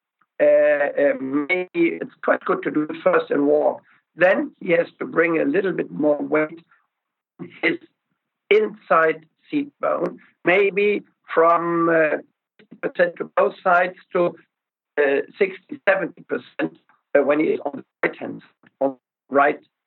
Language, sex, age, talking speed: English, male, 60-79, 150 wpm